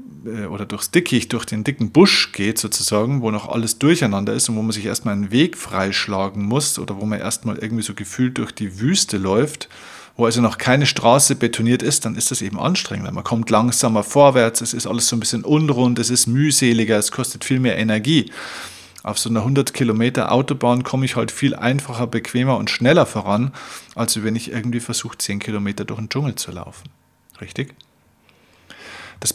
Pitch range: 100-125 Hz